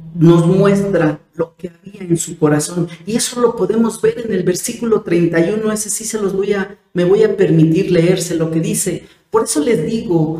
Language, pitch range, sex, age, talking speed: Spanish, 160-195 Hz, female, 50-69, 200 wpm